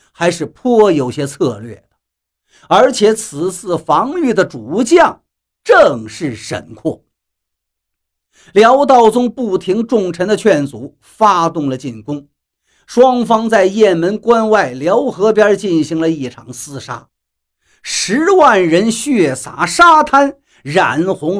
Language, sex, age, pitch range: Chinese, male, 50-69, 160-245 Hz